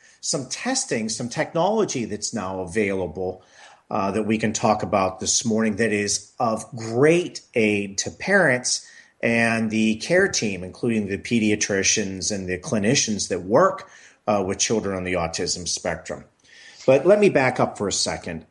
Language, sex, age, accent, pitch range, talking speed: English, male, 40-59, American, 105-130 Hz, 160 wpm